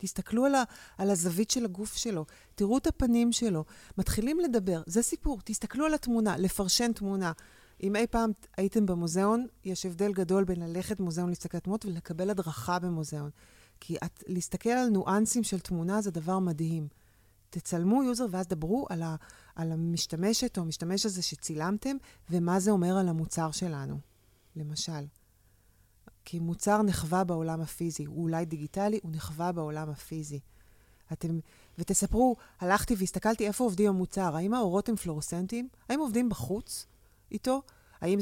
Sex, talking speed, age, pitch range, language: female, 145 wpm, 30-49, 165-225 Hz, Hebrew